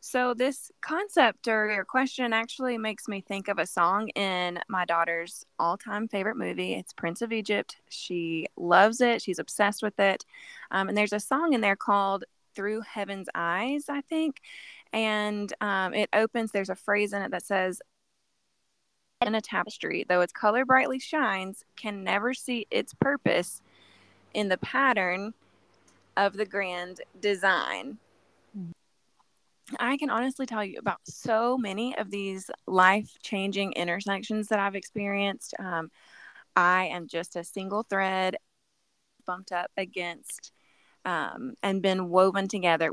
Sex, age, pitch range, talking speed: female, 20-39, 185-230 Hz, 145 wpm